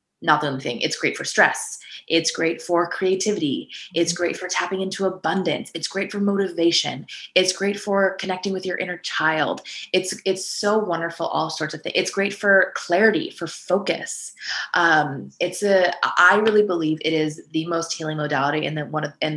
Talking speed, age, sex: 190 wpm, 20-39, female